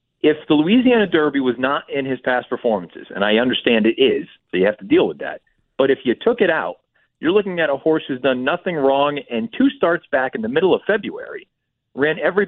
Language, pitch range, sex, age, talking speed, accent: English, 130-165 Hz, male, 40-59, 230 wpm, American